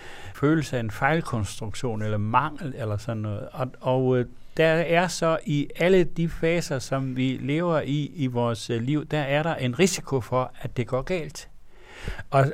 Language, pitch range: Danish, 115-150 Hz